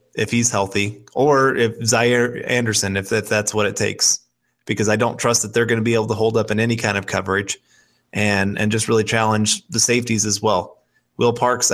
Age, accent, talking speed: 20-39, American, 215 wpm